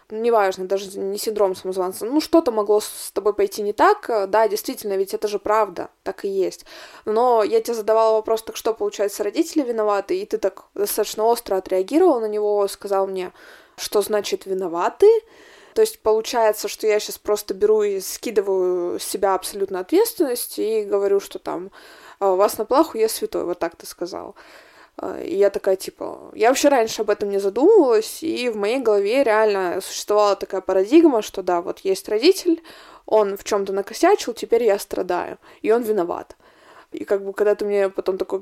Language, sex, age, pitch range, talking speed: Russian, female, 20-39, 200-275 Hz, 180 wpm